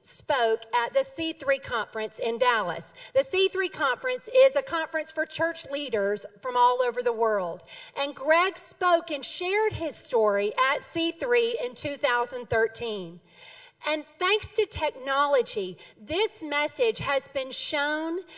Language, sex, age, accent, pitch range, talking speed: English, female, 40-59, American, 245-380 Hz, 135 wpm